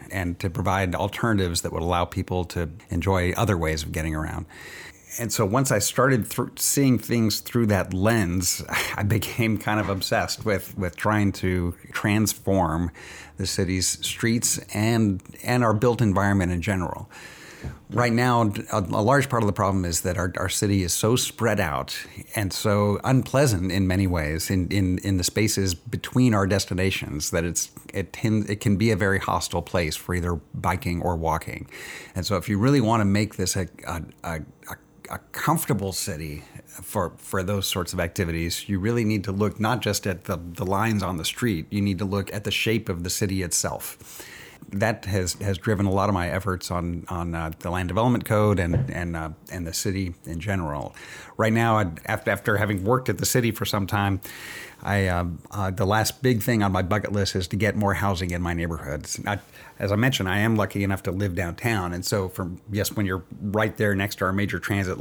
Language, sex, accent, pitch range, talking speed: English, male, American, 90-110 Hz, 200 wpm